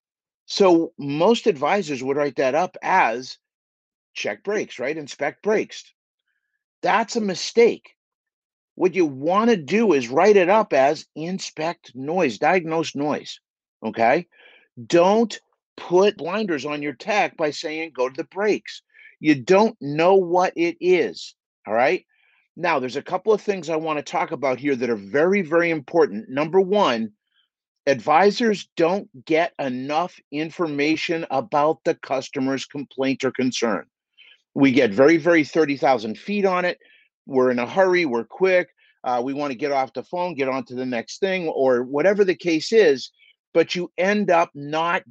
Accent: American